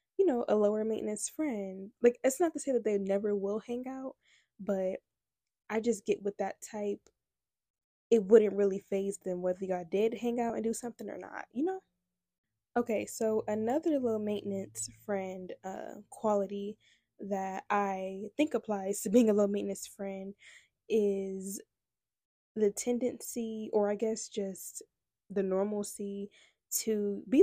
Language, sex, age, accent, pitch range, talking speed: English, female, 10-29, American, 195-235 Hz, 155 wpm